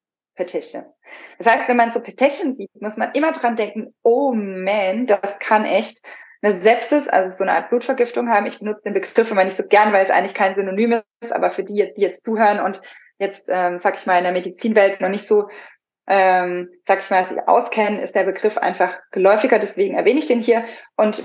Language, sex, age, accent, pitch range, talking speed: German, female, 20-39, German, 185-230 Hz, 210 wpm